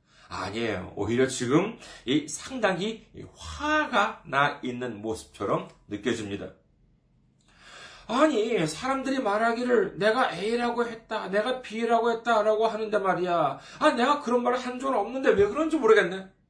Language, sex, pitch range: Korean, male, 150-245 Hz